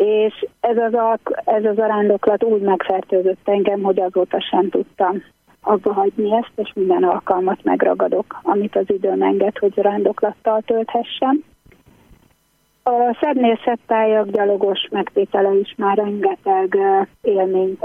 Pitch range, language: 190-225 Hz, Hungarian